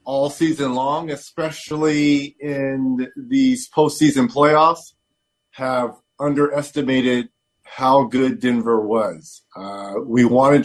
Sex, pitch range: male, 125-145 Hz